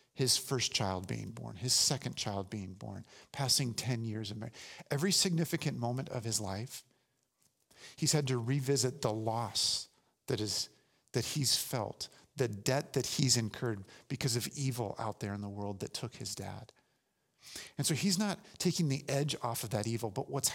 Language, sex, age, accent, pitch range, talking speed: English, male, 50-69, American, 115-140 Hz, 180 wpm